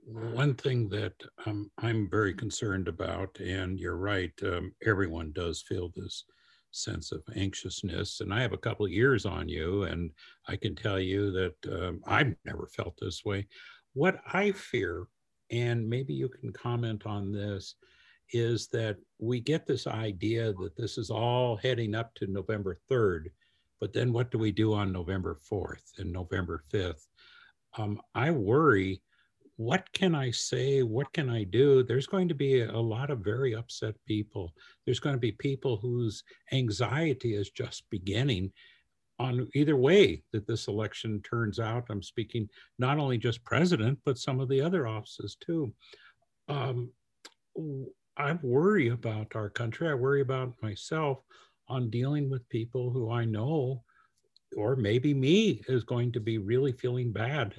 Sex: male